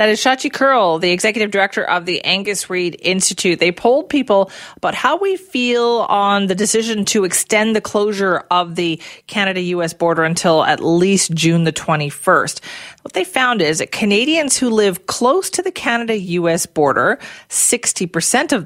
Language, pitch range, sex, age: English, 170-225 Hz, female, 40-59